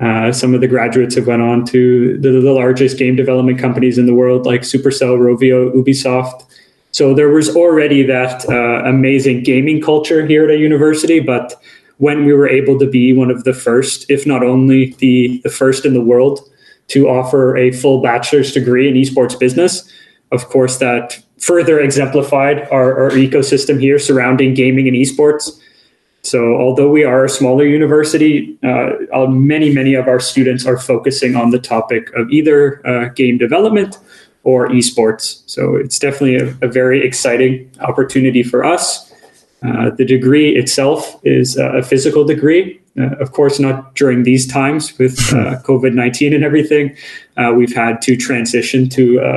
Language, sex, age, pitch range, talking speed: English, male, 20-39, 125-145 Hz, 170 wpm